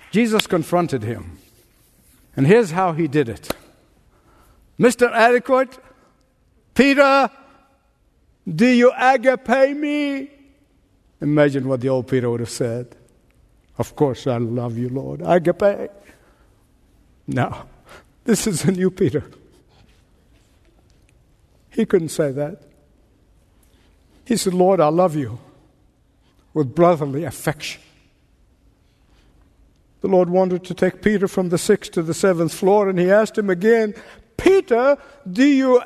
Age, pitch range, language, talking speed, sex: 60-79, 145-245 Hz, English, 120 wpm, male